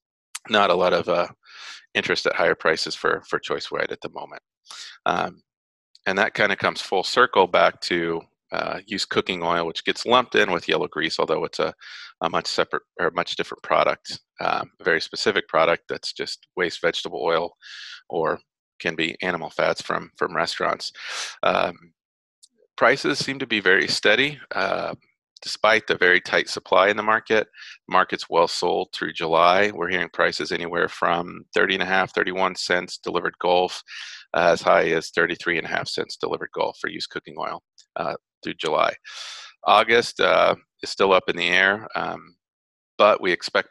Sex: male